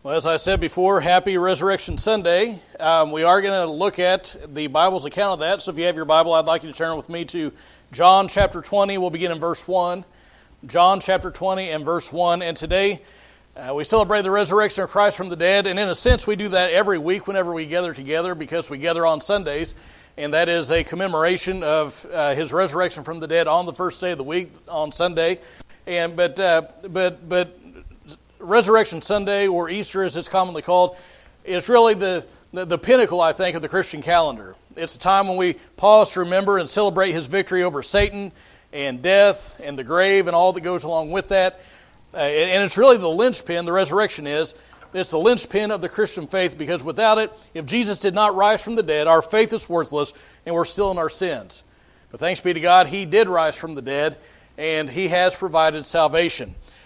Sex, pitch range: male, 165-195 Hz